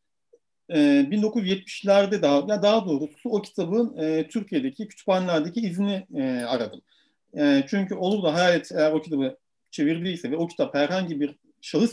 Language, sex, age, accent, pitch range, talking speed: Turkish, male, 50-69, native, 170-240 Hz, 135 wpm